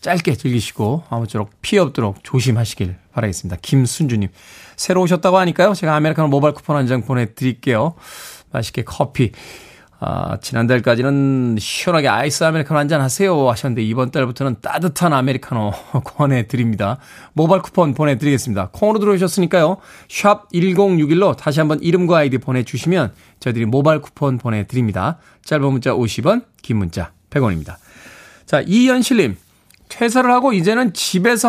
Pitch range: 120-175 Hz